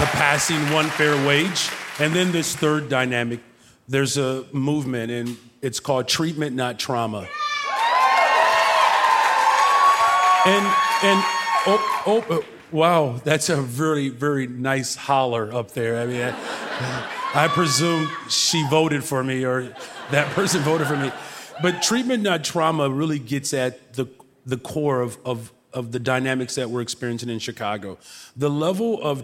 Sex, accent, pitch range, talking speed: male, American, 125-155 Hz, 140 wpm